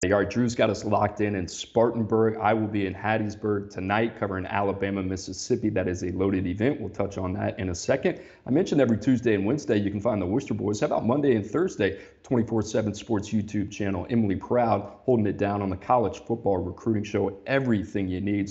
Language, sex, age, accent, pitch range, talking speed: English, male, 40-59, American, 100-115 Hz, 210 wpm